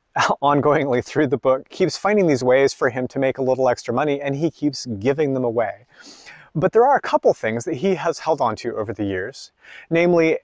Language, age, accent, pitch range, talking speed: English, 30-49, American, 115-155 Hz, 220 wpm